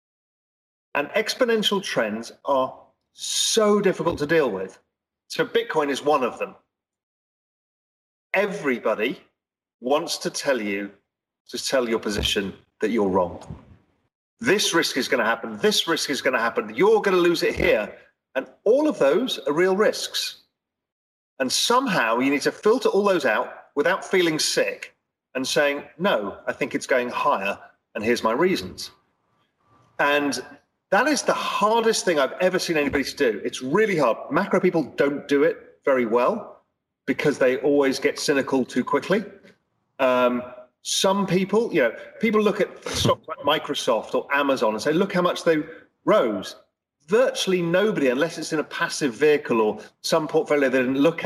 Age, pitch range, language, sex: 40-59, 145-215 Hz, English, male